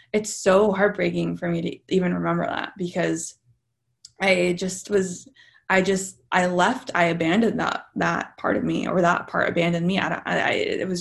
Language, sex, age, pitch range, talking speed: English, female, 20-39, 165-210 Hz, 185 wpm